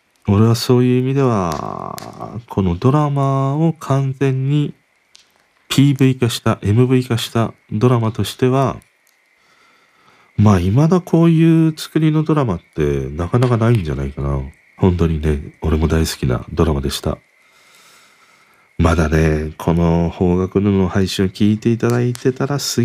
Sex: male